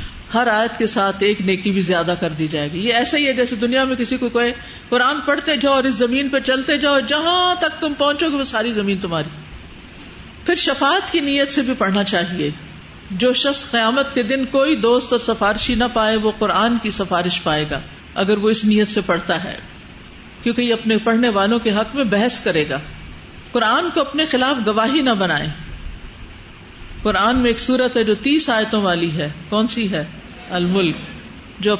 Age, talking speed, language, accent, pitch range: 50-69, 165 wpm, English, Indian, 200-270 Hz